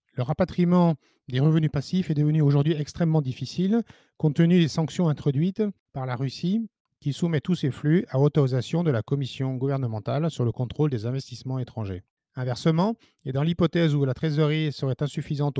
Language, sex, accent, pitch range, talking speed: French, male, French, 135-170 Hz, 170 wpm